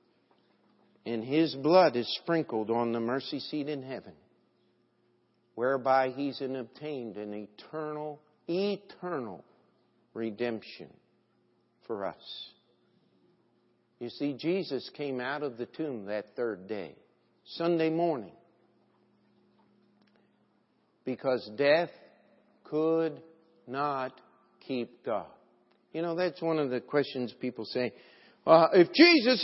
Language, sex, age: English, male, 60-79